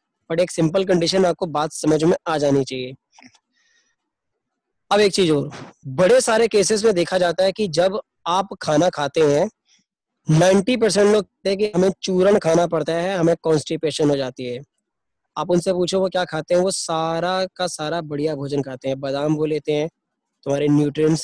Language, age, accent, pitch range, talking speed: Hindi, 20-39, native, 150-185 Hz, 185 wpm